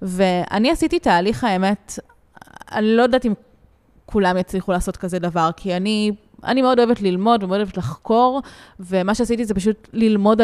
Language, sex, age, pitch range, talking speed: Hebrew, female, 20-39, 190-240 Hz, 155 wpm